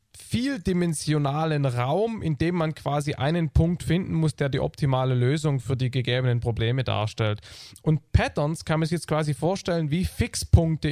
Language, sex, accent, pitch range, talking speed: German, male, German, 135-165 Hz, 160 wpm